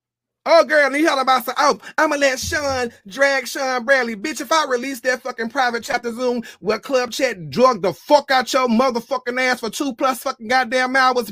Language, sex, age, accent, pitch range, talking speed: English, male, 30-49, American, 220-290 Hz, 205 wpm